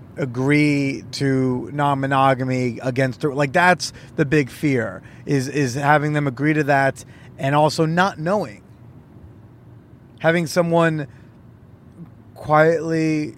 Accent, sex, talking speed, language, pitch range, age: American, male, 105 wpm, English, 125-155 Hz, 30-49